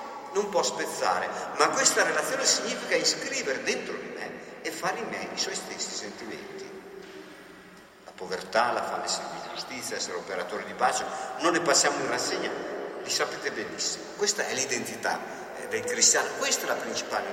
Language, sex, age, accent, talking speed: Italian, male, 50-69, native, 160 wpm